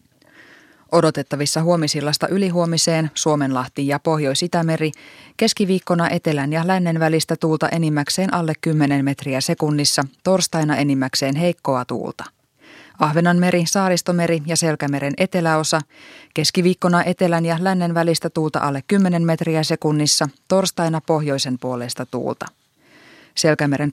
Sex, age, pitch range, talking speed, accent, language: female, 20-39, 150-175 Hz, 105 wpm, native, Finnish